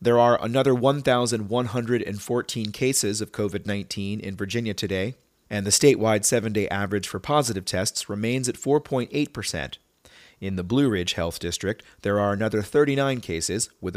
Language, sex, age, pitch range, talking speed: English, male, 30-49, 95-120 Hz, 140 wpm